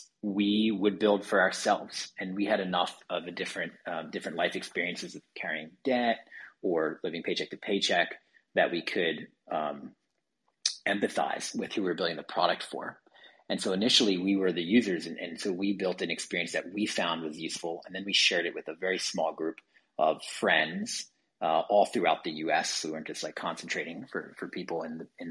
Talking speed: 200 wpm